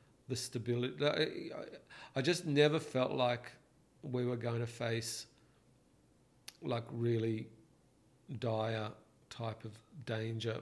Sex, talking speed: male, 105 wpm